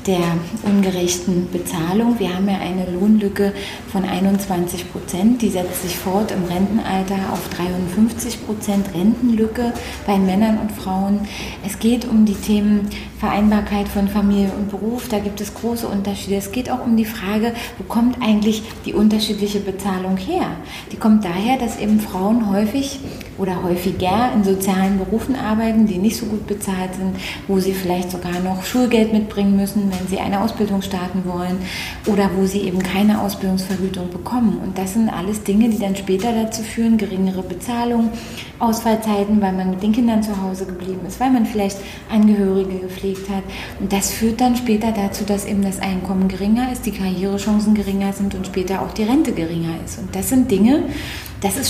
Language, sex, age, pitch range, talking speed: German, female, 30-49, 190-220 Hz, 175 wpm